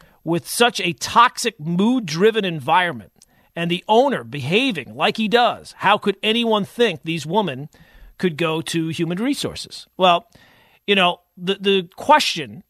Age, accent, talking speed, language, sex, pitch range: 40-59, American, 140 wpm, English, male, 155-205 Hz